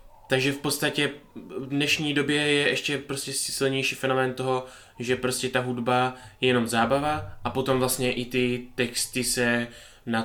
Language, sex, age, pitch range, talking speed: Czech, male, 20-39, 110-130 Hz, 160 wpm